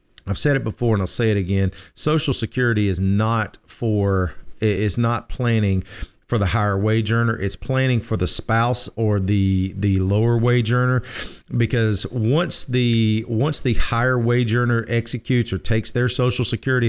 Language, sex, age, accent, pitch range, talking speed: English, male, 40-59, American, 100-125 Hz, 165 wpm